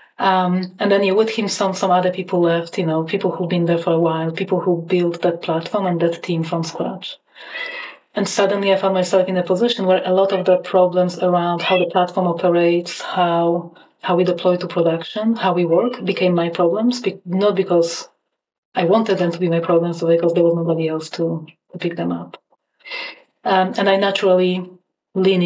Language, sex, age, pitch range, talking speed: English, female, 30-49, 170-185 Hz, 205 wpm